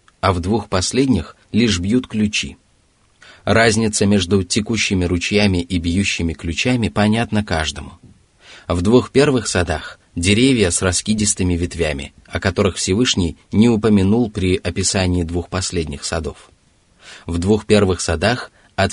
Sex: male